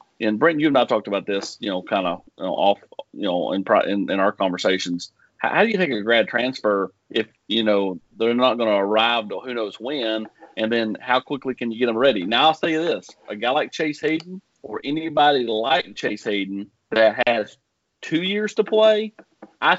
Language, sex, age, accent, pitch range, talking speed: English, male, 40-59, American, 110-155 Hz, 210 wpm